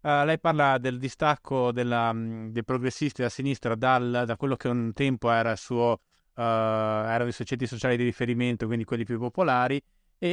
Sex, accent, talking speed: male, native, 165 wpm